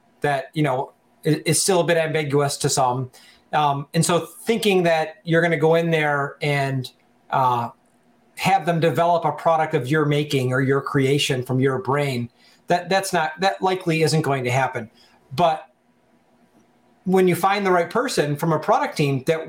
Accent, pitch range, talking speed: American, 145-180 Hz, 170 wpm